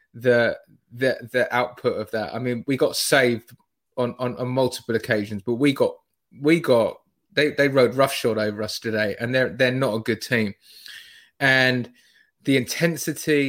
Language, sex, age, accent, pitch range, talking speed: English, male, 20-39, British, 120-150 Hz, 170 wpm